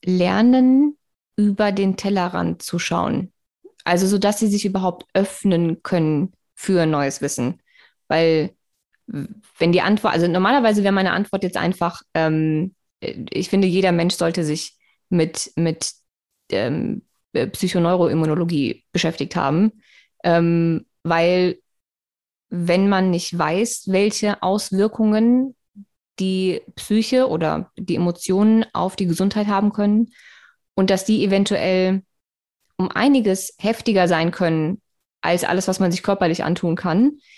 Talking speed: 120 wpm